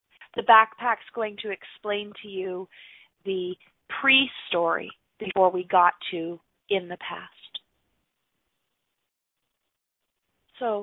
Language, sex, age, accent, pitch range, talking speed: English, female, 30-49, American, 210-260 Hz, 95 wpm